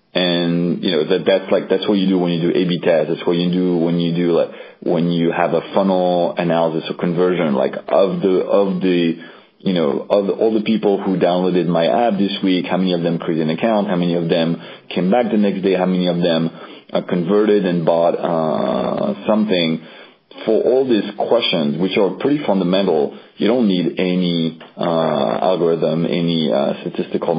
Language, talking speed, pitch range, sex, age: English, 200 wpm, 85-95 Hz, male, 30-49